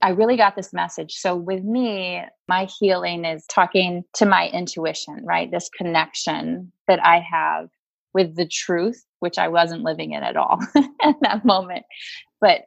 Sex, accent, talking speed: female, American, 165 wpm